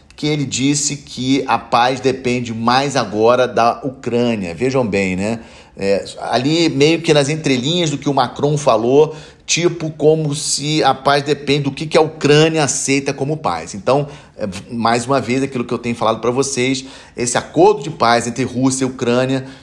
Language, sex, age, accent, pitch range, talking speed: Portuguese, male, 40-59, Brazilian, 115-140 Hz, 175 wpm